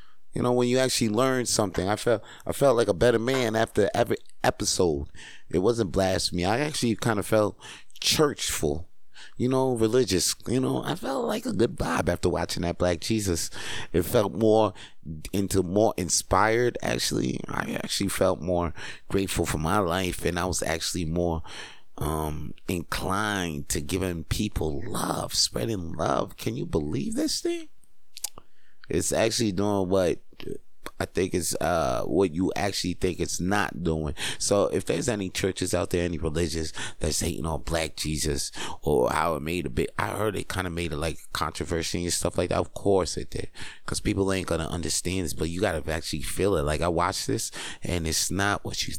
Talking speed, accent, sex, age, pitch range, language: 185 wpm, American, male, 30-49, 80-105 Hz, English